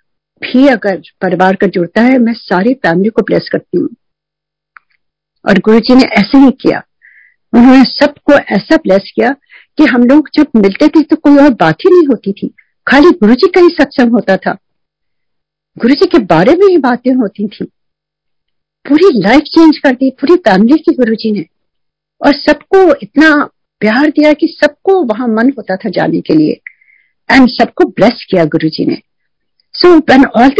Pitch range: 220-300 Hz